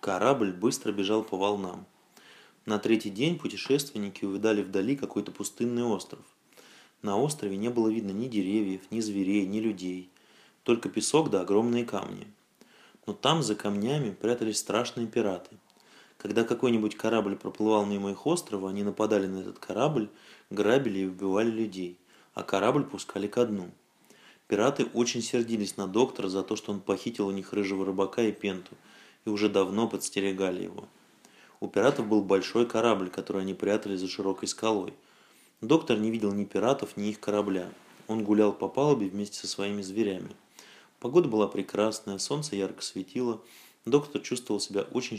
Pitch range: 100-115 Hz